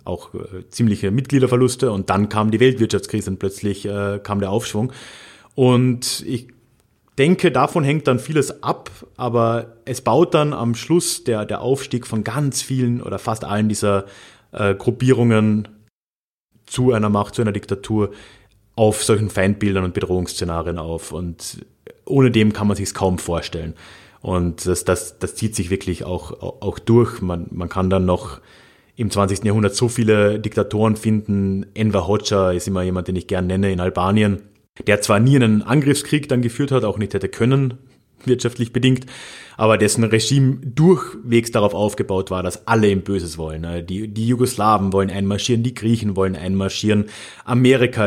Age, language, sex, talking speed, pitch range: 30-49, German, male, 160 wpm, 95-120 Hz